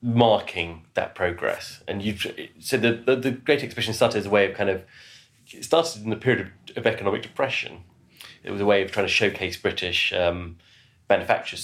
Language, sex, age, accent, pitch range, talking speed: English, male, 30-49, British, 85-110 Hz, 200 wpm